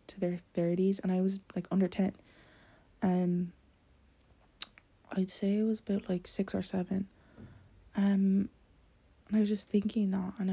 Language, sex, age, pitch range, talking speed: English, female, 20-39, 175-200 Hz, 155 wpm